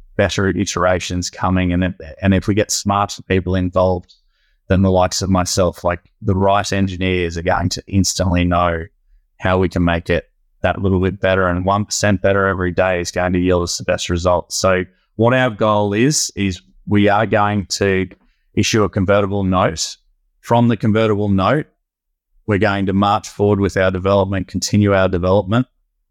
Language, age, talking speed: English, 20-39, 175 wpm